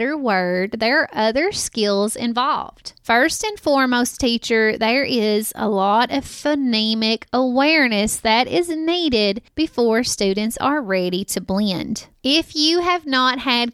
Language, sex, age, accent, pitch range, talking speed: English, female, 20-39, American, 220-285 Hz, 135 wpm